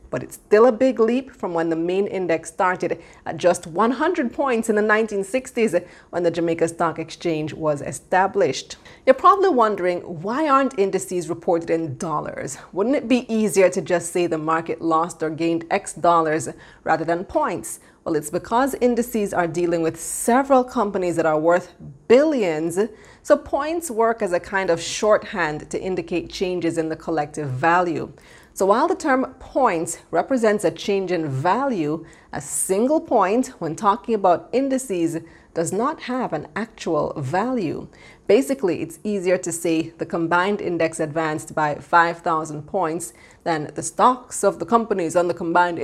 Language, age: English, 30-49